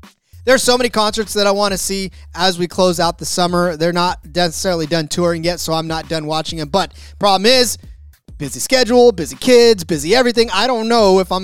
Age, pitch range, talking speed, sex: 30-49, 165-215 Hz, 215 wpm, male